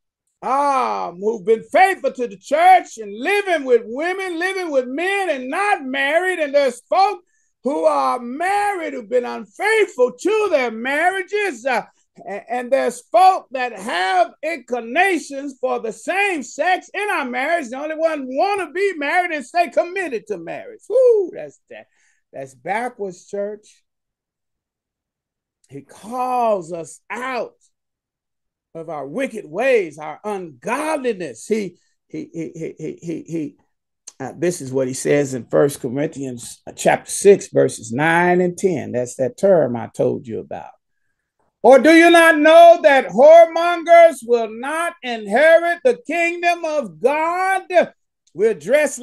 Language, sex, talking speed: English, male, 140 wpm